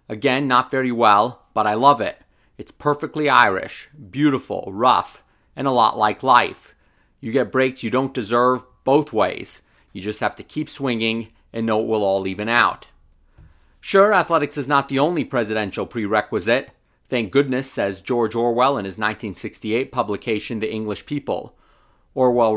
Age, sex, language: 30-49, male, English